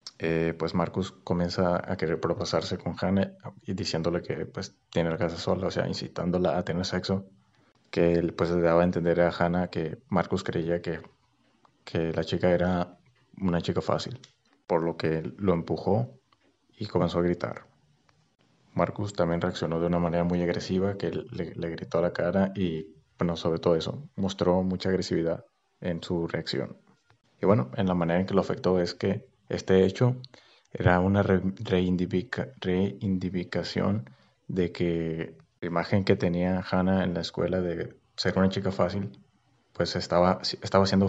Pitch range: 85-95 Hz